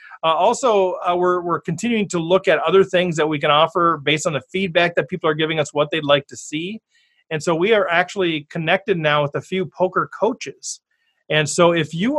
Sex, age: male, 30-49